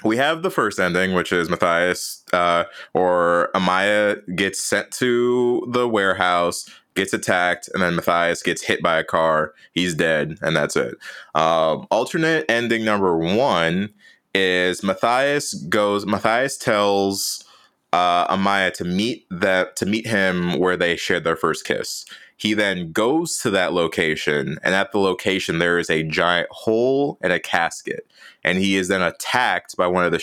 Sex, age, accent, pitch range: male, 20-39, American, 90-105 Hz